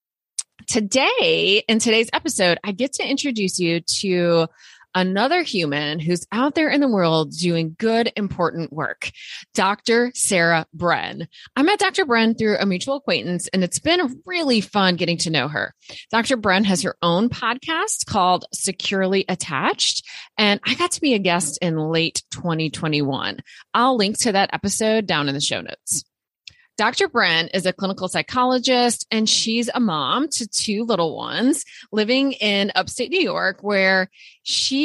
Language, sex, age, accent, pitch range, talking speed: English, female, 20-39, American, 175-255 Hz, 160 wpm